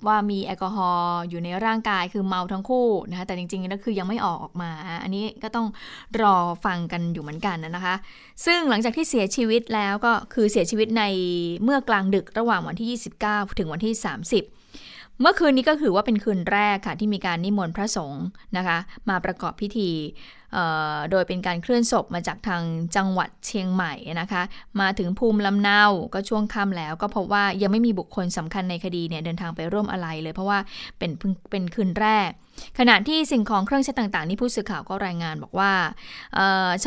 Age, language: 20-39, Thai